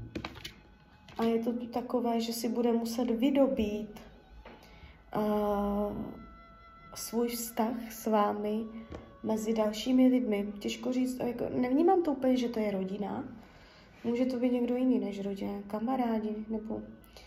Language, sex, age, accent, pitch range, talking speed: Czech, female, 20-39, native, 215-245 Hz, 120 wpm